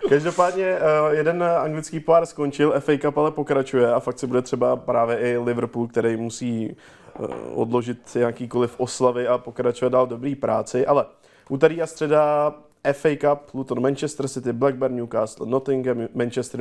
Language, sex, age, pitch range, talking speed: Czech, male, 20-39, 120-140 Hz, 140 wpm